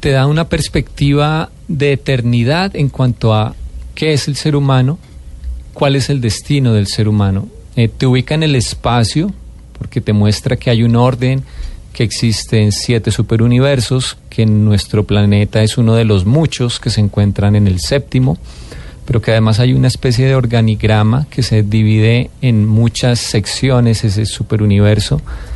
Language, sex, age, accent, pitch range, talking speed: English, male, 30-49, Colombian, 105-130 Hz, 165 wpm